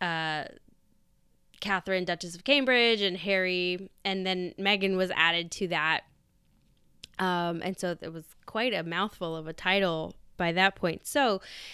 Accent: American